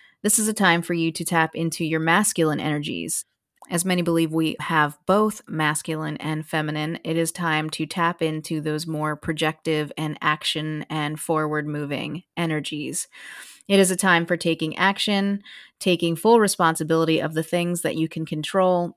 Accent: American